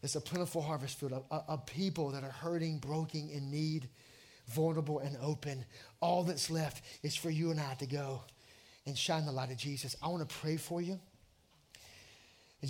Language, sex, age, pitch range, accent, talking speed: English, male, 30-49, 130-165 Hz, American, 195 wpm